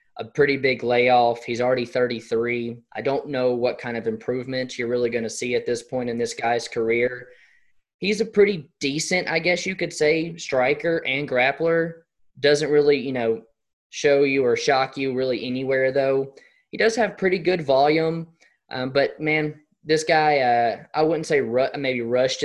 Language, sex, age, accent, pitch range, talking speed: English, male, 20-39, American, 120-155 Hz, 180 wpm